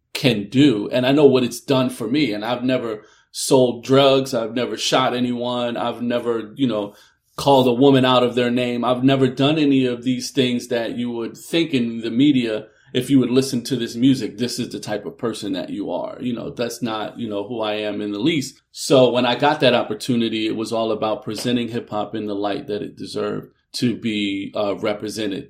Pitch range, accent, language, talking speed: 105-130 Hz, American, English, 220 wpm